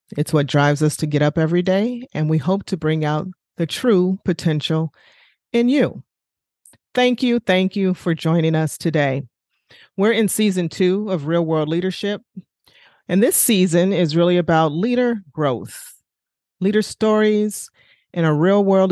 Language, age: English, 40-59